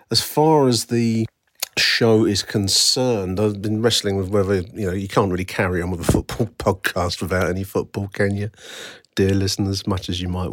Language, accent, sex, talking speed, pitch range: English, British, male, 200 wpm, 95-115 Hz